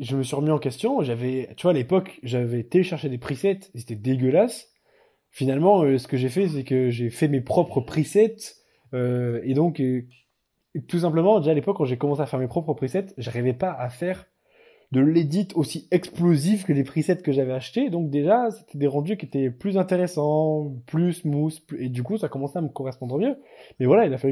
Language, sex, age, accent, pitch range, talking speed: French, male, 20-39, French, 125-165 Hz, 215 wpm